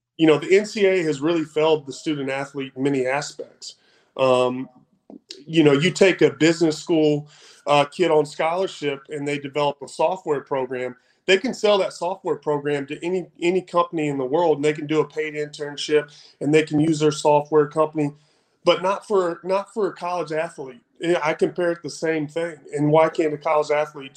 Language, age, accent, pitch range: English, 30-49, American, 145-175 Hz